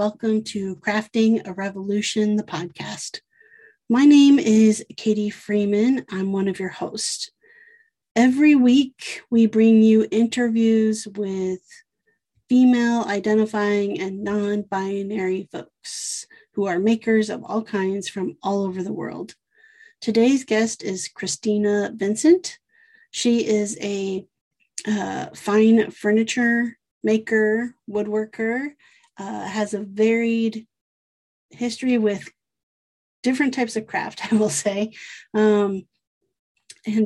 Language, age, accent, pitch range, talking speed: English, 30-49, American, 195-240 Hz, 110 wpm